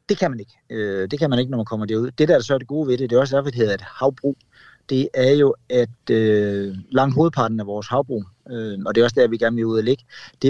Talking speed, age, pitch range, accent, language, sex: 285 wpm, 30-49, 110-135 Hz, native, Danish, male